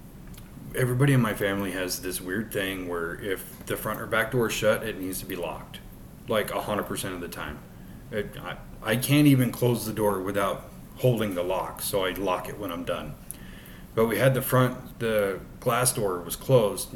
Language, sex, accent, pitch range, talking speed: English, male, American, 95-115 Hz, 195 wpm